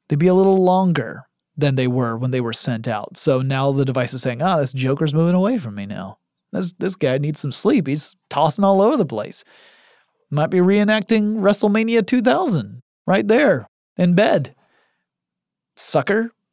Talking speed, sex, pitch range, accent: 180 wpm, male, 130-185 Hz, American